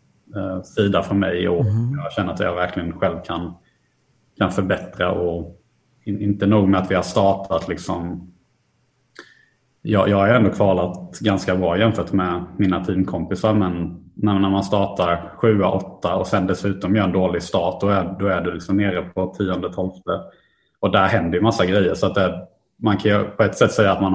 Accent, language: Norwegian, Swedish